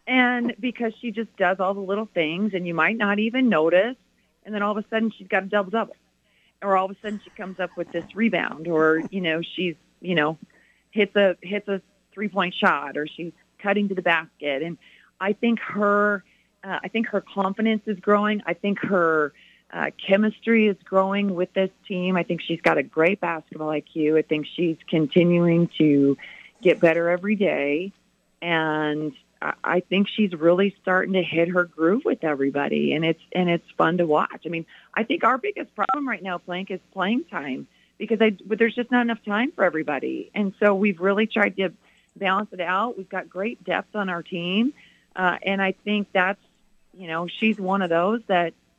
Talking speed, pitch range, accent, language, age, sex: 200 wpm, 170-205 Hz, American, English, 40-59, female